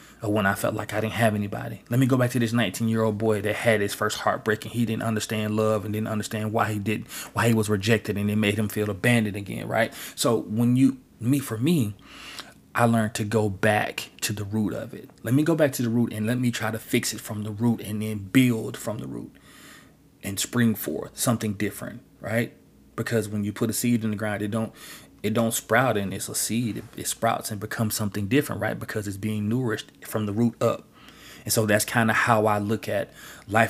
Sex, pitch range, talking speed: male, 105-120 Hz, 240 wpm